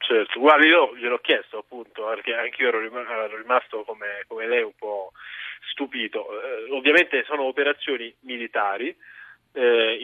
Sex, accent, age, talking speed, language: male, native, 20-39, 135 wpm, Italian